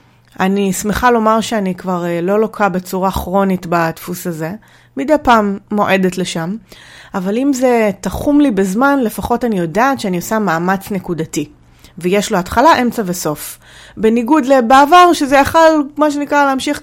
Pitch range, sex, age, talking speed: 185-260 Hz, female, 30-49, 145 wpm